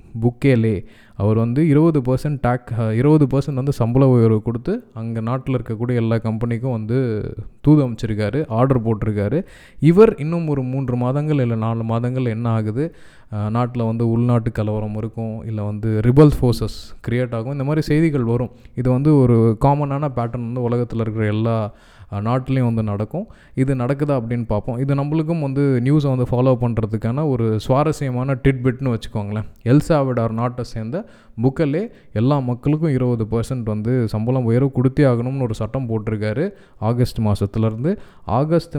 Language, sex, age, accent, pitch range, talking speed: Tamil, male, 20-39, native, 115-140 Hz, 140 wpm